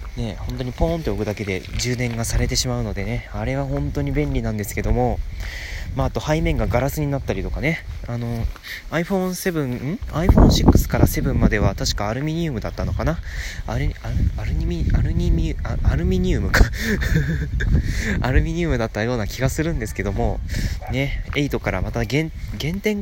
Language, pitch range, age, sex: Japanese, 90-135 Hz, 20-39, male